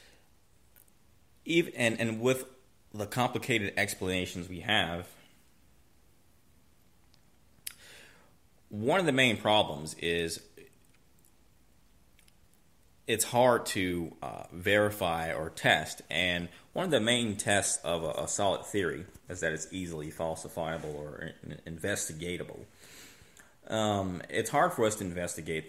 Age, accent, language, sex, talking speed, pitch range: 30-49, American, English, male, 105 wpm, 85-105 Hz